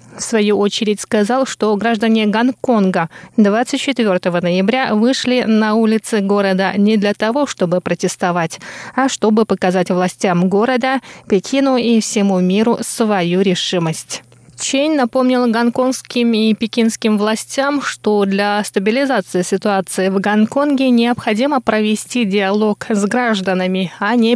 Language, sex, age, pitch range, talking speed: Russian, female, 20-39, 195-235 Hz, 120 wpm